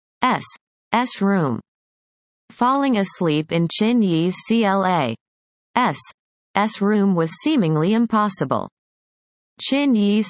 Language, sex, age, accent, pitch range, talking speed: English, female, 30-49, American, 170-230 Hz, 100 wpm